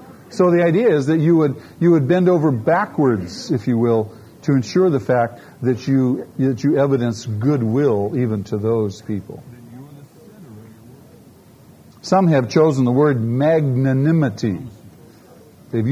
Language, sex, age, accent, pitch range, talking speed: English, male, 50-69, American, 120-165 Hz, 135 wpm